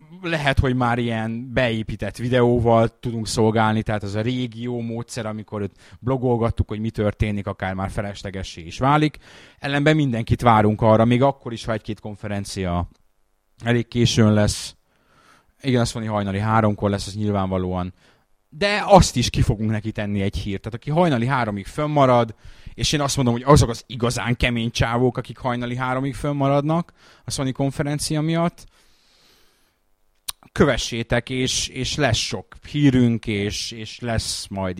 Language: Hungarian